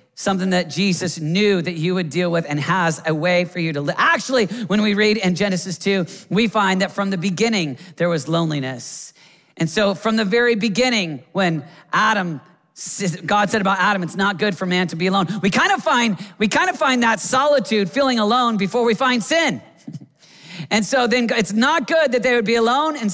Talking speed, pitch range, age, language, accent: 210 wpm, 165-230 Hz, 40-59, English, American